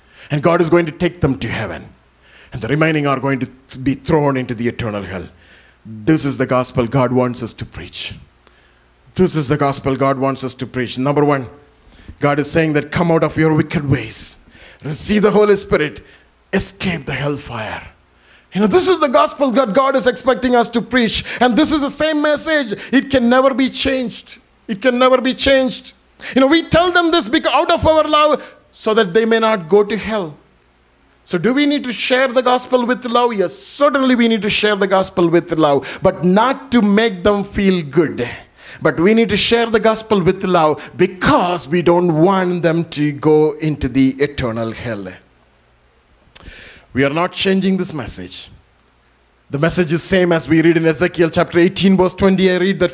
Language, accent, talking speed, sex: English, Indian, 200 wpm, male